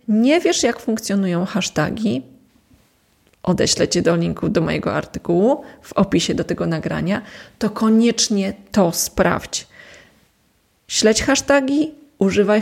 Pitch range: 185-250 Hz